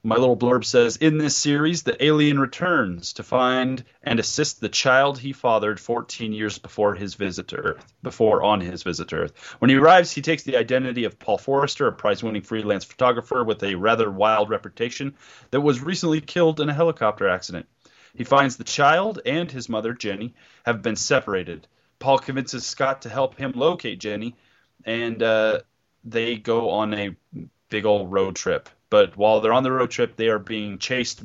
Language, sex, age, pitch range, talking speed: English, male, 30-49, 105-135 Hz, 190 wpm